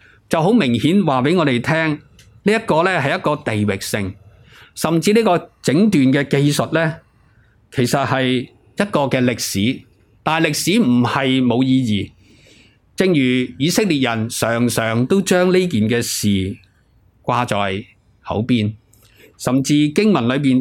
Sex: male